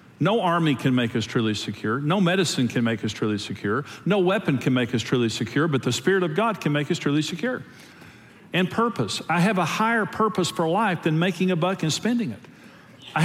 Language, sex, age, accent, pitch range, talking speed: English, male, 50-69, American, 130-190 Hz, 220 wpm